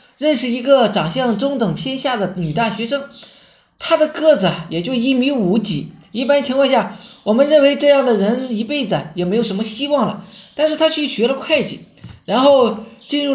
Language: Chinese